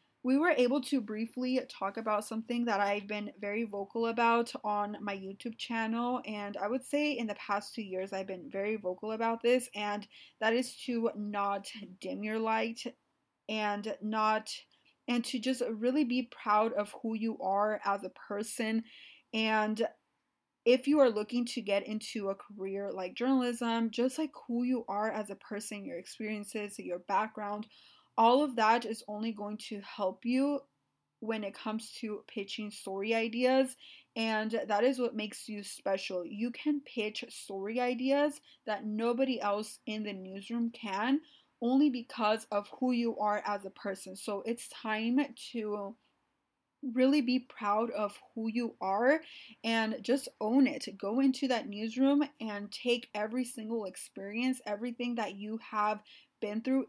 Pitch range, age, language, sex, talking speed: 205-250 Hz, 20-39, English, female, 160 wpm